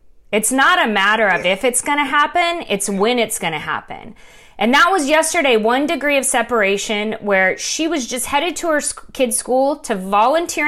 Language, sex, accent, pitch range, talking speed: English, female, American, 220-300 Hz, 200 wpm